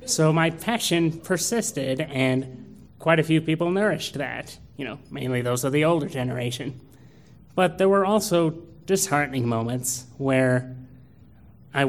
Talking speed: 135 wpm